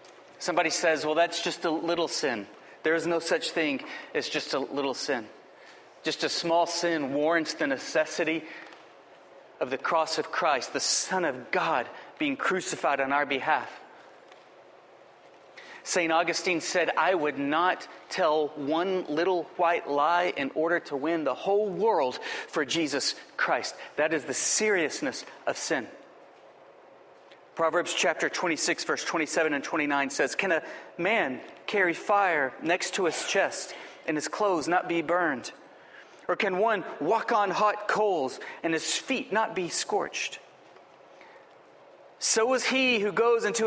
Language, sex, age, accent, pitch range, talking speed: English, male, 40-59, American, 165-220 Hz, 150 wpm